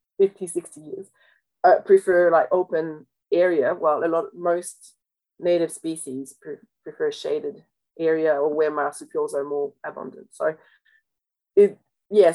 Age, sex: 30-49, female